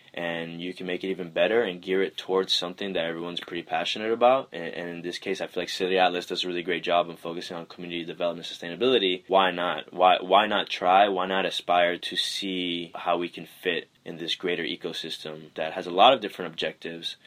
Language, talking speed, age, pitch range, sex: English, 220 wpm, 10-29, 85-95 Hz, male